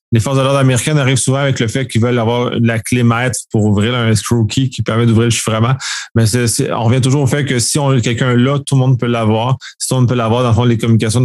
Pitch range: 115-140 Hz